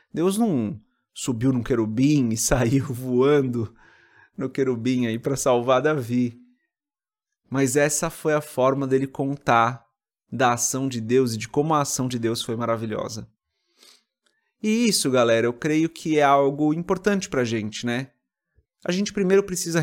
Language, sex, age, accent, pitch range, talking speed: Portuguese, male, 30-49, Brazilian, 120-170 Hz, 150 wpm